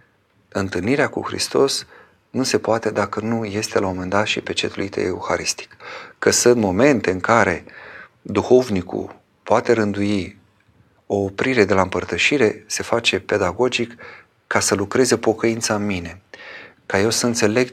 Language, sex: Romanian, male